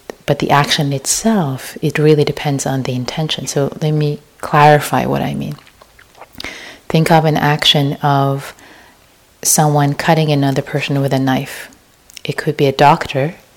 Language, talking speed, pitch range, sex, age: English, 150 wpm, 135-160 Hz, female, 30-49